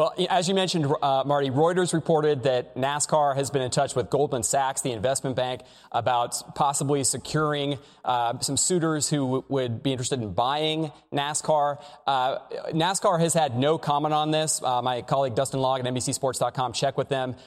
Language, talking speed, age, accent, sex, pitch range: English, 175 wpm, 30-49, American, male, 130-160 Hz